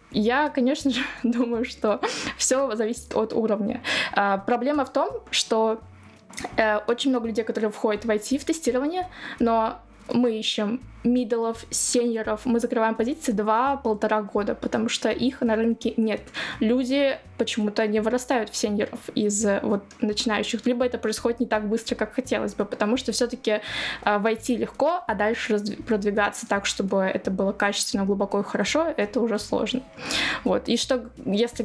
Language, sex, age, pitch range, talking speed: Russian, female, 20-39, 215-245 Hz, 150 wpm